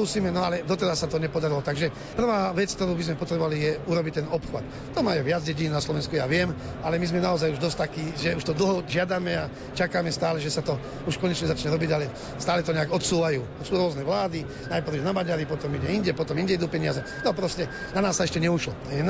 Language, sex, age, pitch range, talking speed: Slovak, male, 40-59, 150-180 Hz, 235 wpm